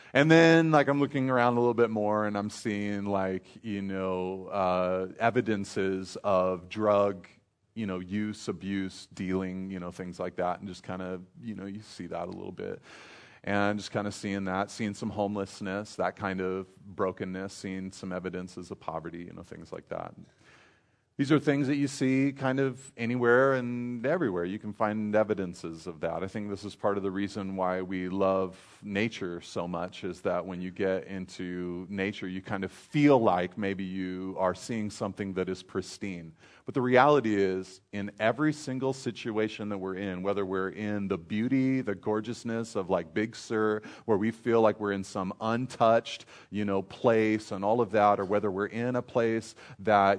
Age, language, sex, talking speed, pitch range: 30-49, English, male, 190 wpm, 95-115 Hz